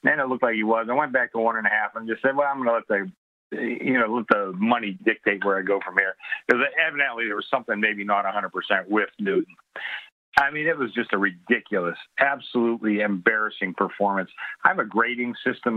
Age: 50-69